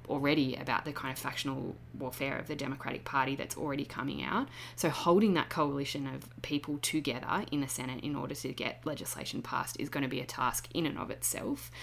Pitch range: 130-155 Hz